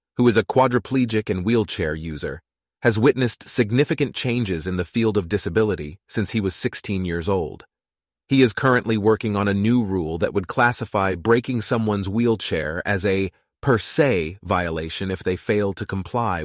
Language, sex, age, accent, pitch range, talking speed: English, male, 30-49, American, 95-120 Hz, 170 wpm